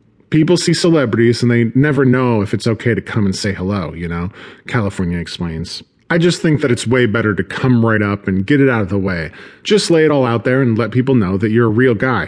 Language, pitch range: English, 95-135 Hz